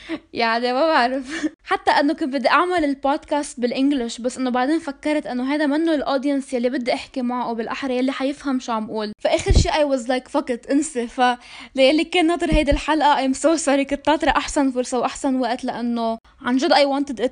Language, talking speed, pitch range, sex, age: Arabic, 200 wpm, 235-285 Hz, female, 10-29